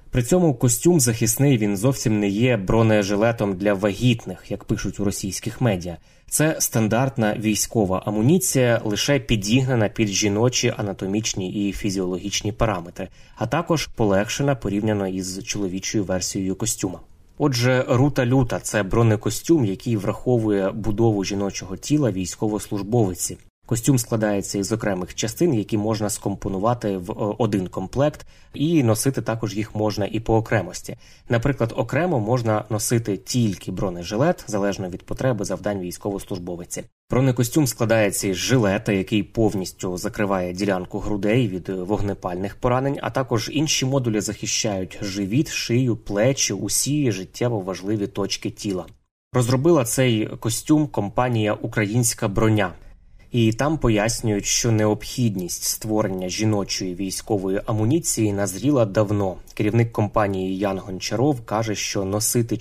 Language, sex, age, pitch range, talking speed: Ukrainian, male, 20-39, 100-120 Hz, 120 wpm